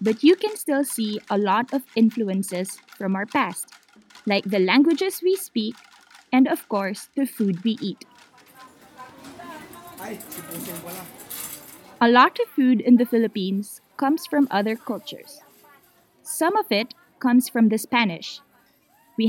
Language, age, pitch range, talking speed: Italian, 20-39, 215-275 Hz, 135 wpm